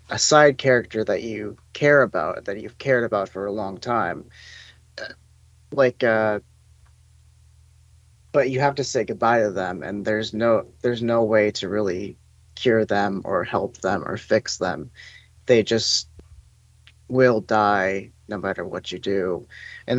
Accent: American